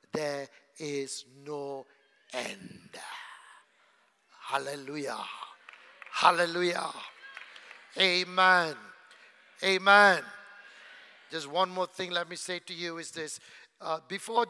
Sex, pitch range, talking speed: male, 180-245 Hz, 85 wpm